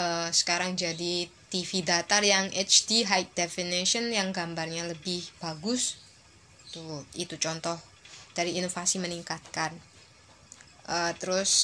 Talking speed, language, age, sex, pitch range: 100 wpm, Indonesian, 20-39, female, 165-205 Hz